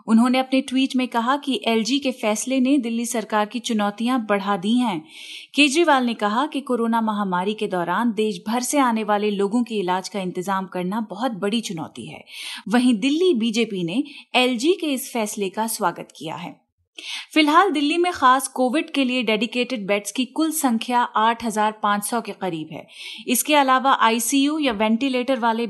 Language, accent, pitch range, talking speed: Hindi, native, 220-275 Hz, 175 wpm